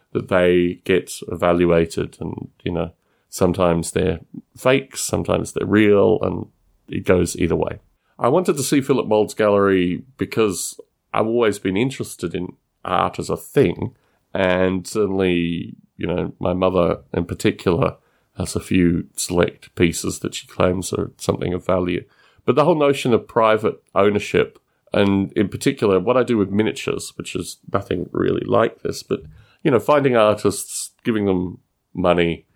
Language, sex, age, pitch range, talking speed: English, male, 30-49, 90-130 Hz, 155 wpm